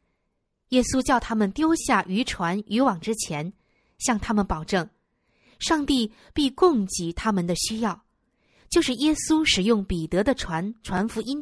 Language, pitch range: Chinese, 190-275 Hz